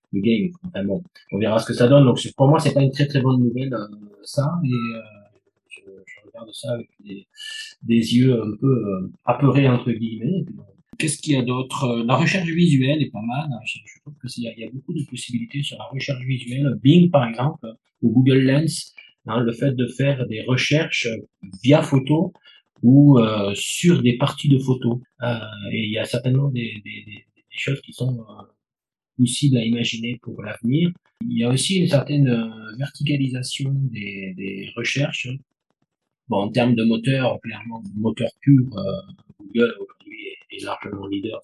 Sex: male